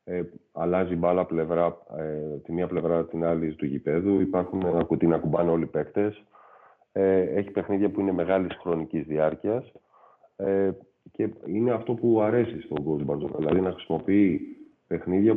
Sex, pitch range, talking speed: male, 80-90 Hz, 130 wpm